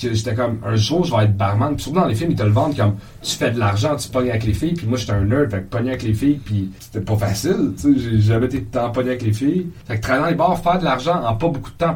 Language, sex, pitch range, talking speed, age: French, male, 105-145 Hz, 310 wpm, 30-49